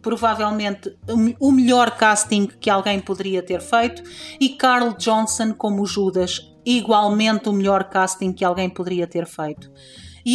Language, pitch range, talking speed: Portuguese, 195-230 Hz, 140 wpm